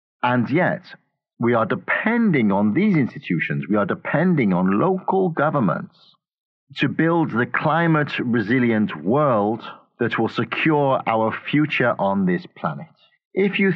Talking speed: 130 wpm